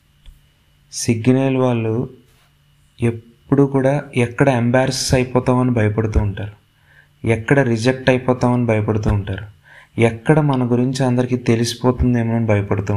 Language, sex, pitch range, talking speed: Telugu, male, 105-135 Hz, 95 wpm